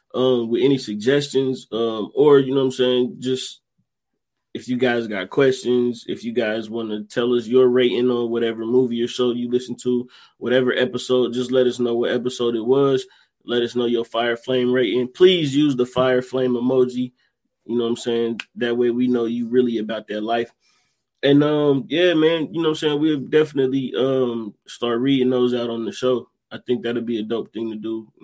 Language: English